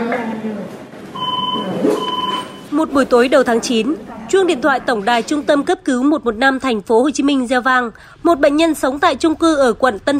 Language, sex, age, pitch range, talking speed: Vietnamese, female, 20-39, 245-315 Hz, 195 wpm